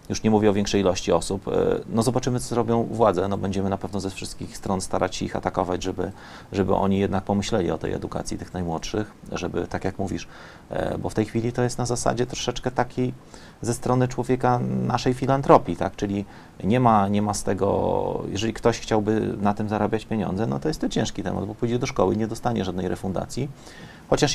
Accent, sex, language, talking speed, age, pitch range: native, male, Polish, 205 wpm, 30-49, 95-120 Hz